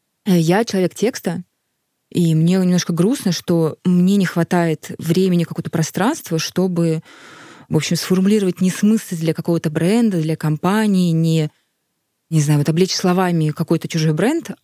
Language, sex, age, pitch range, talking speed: Russian, female, 20-39, 165-195 Hz, 135 wpm